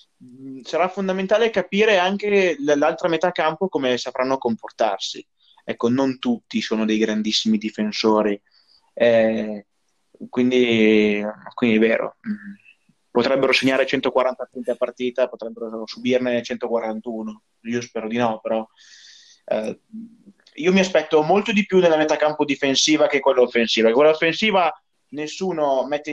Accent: native